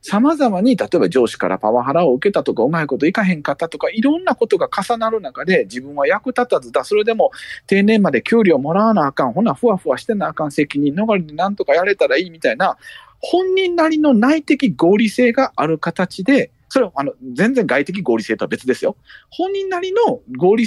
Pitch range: 175-275 Hz